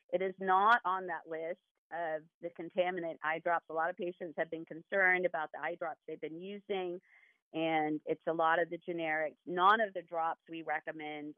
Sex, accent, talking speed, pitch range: female, American, 200 wpm, 160-190 Hz